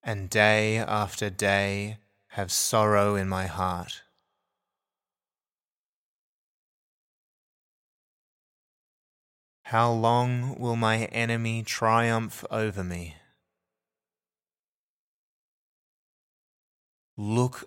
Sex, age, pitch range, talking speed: male, 20-39, 85-110 Hz, 60 wpm